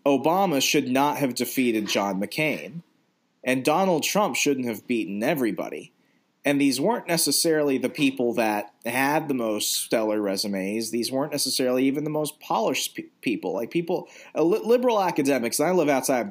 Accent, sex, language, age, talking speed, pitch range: American, male, English, 30-49, 165 wpm, 115-160 Hz